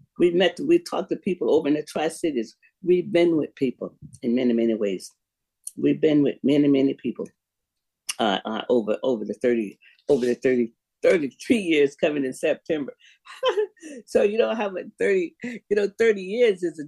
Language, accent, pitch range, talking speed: English, American, 130-195 Hz, 180 wpm